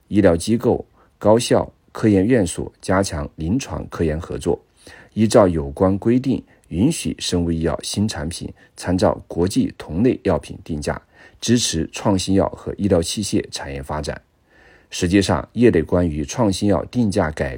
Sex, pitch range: male, 80-100 Hz